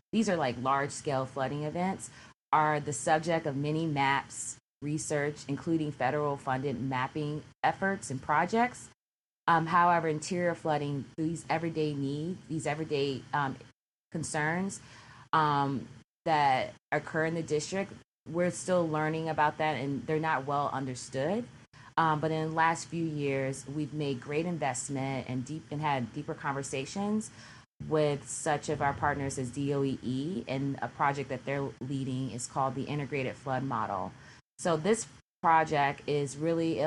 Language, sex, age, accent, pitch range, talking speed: English, female, 30-49, American, 130-155 Hz, 145 wpm